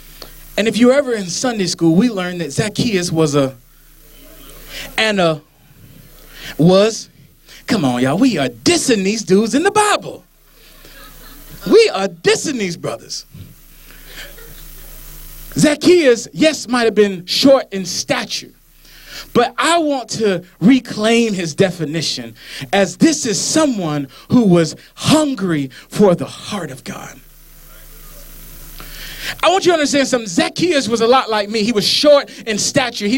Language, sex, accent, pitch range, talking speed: English, male, American, 185-275 Hz, 140 wpm